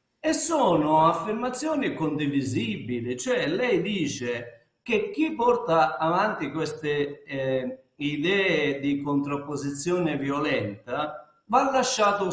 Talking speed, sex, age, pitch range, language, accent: 90 wpm, male, 50-69, 145-220 Hz, Italian, native